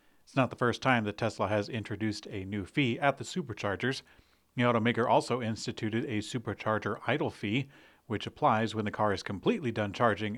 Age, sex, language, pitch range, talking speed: 40-59, male, English, 105-130 Hz, 185 wpm